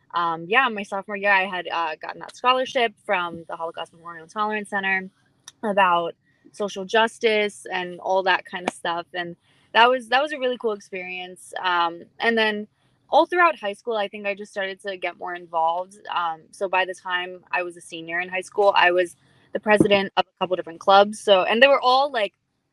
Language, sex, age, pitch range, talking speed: English, female, 20-39, 180-215 Hz, 205 wpm